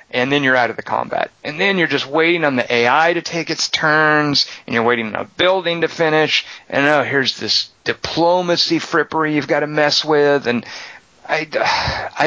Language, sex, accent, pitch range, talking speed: English, male, American, 120-150 Hz, 195 wpm